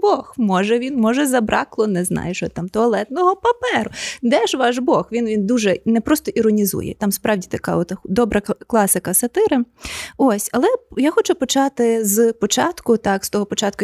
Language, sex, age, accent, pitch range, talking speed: Ukrainian, female, 20-39, native, 210-290 Hz, 170 wpm